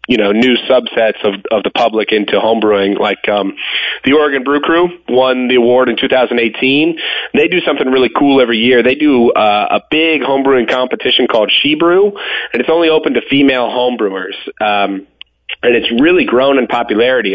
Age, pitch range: 30-49, 110-140 Hz